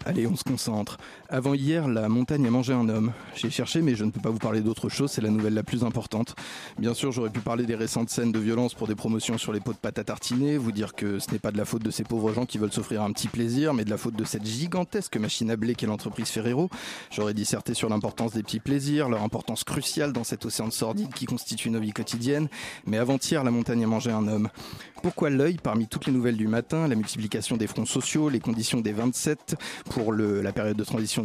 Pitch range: 110-130 Hz